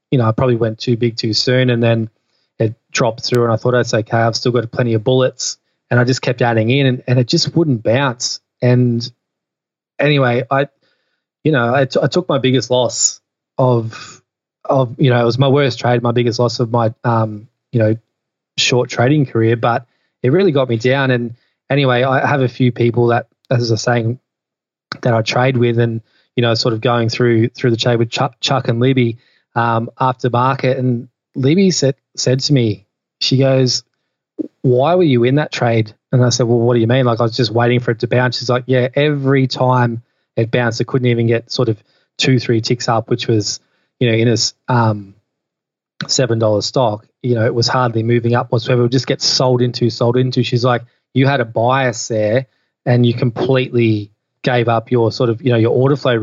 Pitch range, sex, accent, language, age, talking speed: 115-130 Hz, male, Australian, English, 20-39, 215 wpm